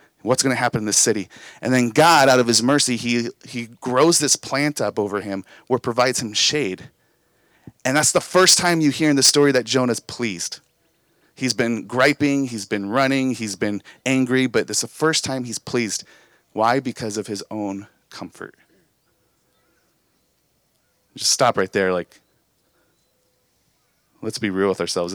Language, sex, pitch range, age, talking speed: English, male, 115-140 Hz, 30-49, 170 wpm